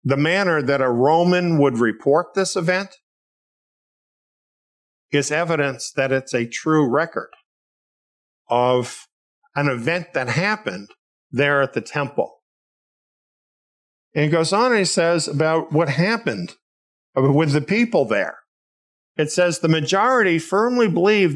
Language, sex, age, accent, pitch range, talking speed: English, male, 50-69, American, 120-165 Hz, 125 wpm